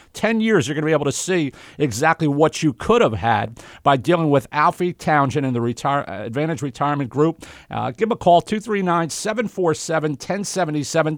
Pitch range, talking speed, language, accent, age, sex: 130-160 Hz, 165 wpm, English, American, 50-69, male